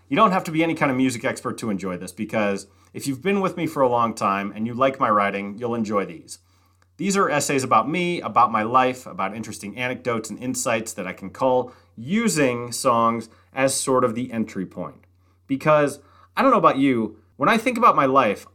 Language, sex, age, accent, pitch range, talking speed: English, male, 30-49, American, 105-150 Hz, 220 wpm